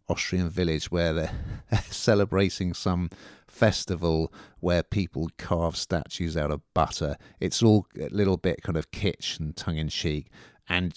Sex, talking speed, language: male, 135 wpm, English